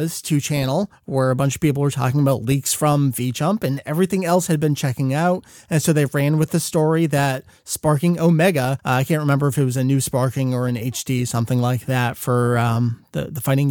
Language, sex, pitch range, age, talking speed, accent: English, male, 135-170 Hz, 30-49, 230 wpm, American